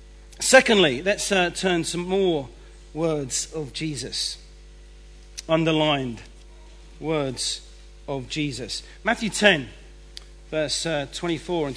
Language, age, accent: English, 40-59, British